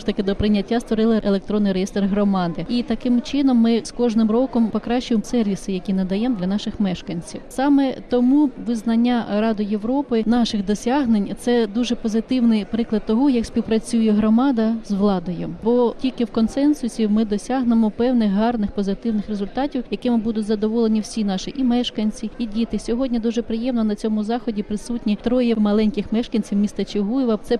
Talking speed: 155 wpm